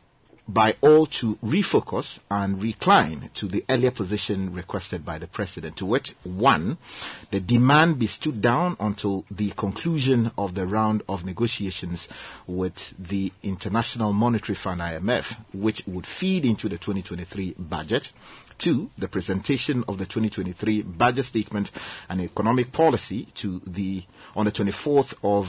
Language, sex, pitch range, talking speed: English, male, 95-120 Hz, 140 wpm